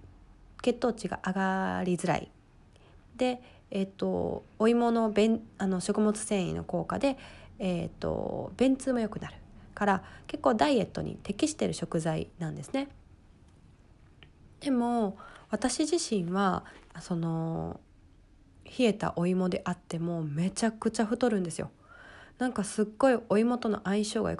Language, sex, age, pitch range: Japanese, female, 20-39, 180-245 Hz